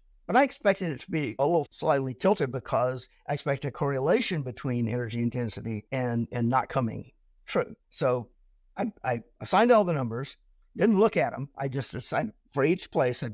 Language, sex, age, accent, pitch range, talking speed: English, male, 50-69, American, 125-155 Hz, 180 wpm